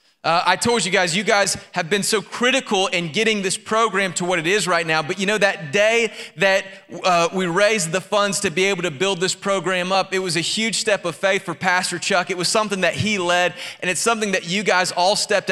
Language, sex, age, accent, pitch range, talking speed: English, male, 30-49, American, 175-215 Hz, 250 wpm